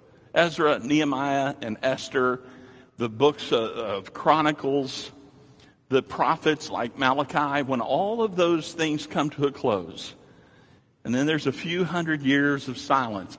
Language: English